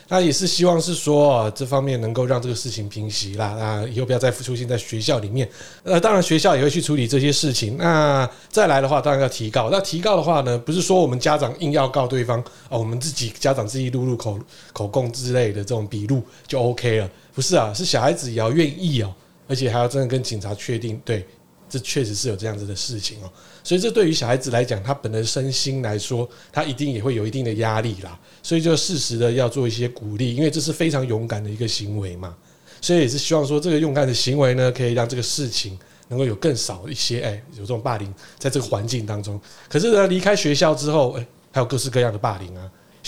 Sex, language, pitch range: male, Chinese, 115-145 Hz